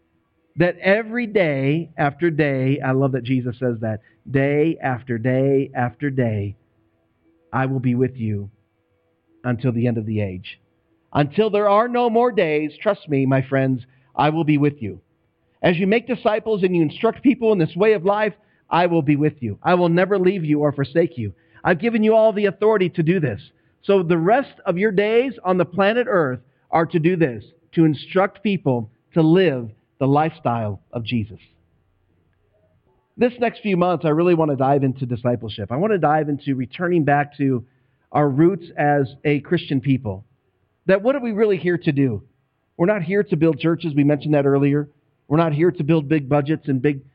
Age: 50-69